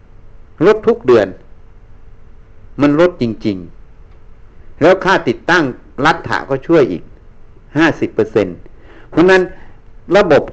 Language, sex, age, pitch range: Thai, male, 60-79, 100-140 Hz